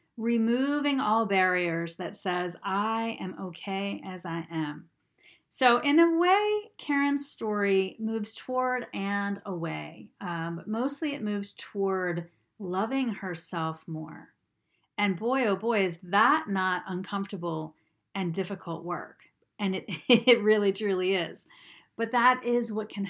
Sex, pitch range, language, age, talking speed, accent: female, 185-230 Hz, English, 40-59, 135 wpm, American